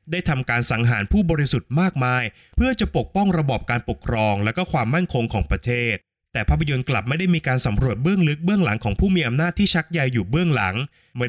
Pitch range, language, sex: 110-155 Hz, Thai, male